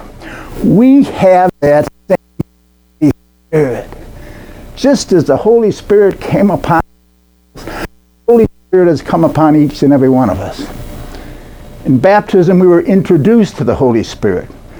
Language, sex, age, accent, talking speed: English, male, 60-79, American, 140 wpm